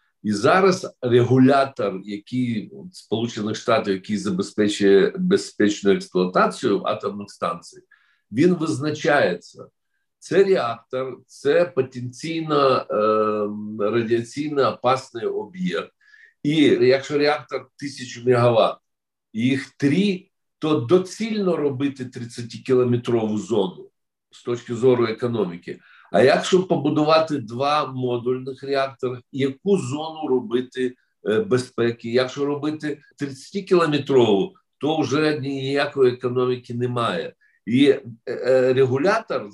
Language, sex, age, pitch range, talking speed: Ukrainian, male, 50-69, 120-160 Hz, 90 wpm